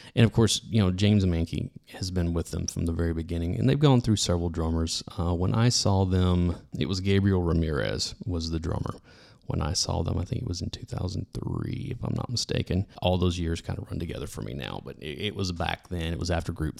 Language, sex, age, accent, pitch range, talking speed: English, male, 30-49, American, 85-105 Hz, 235 wpm